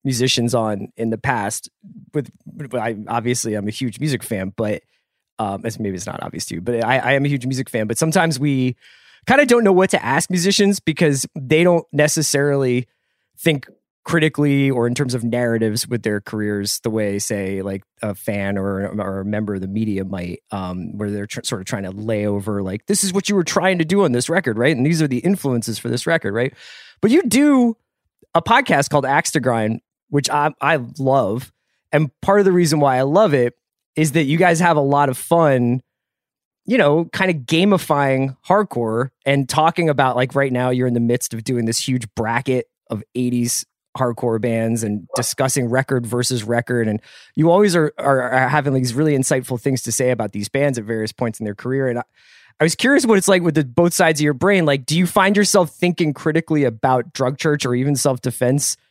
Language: English